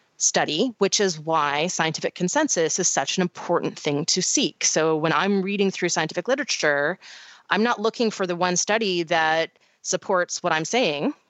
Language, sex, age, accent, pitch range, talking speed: English, female, 30-49, American, 170-235 Hz, 170 wpm